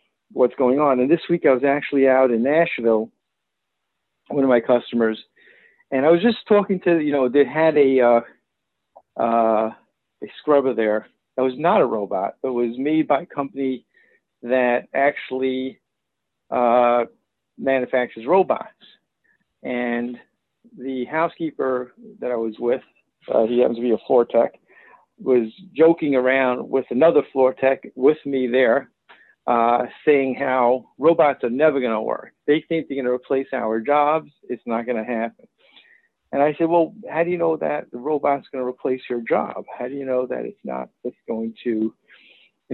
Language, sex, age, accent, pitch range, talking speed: English, male, 50-69, American, 120-155 Hz, 165 wpm